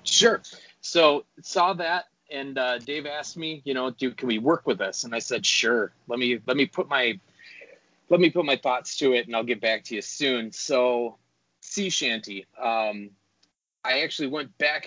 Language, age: English, 20-39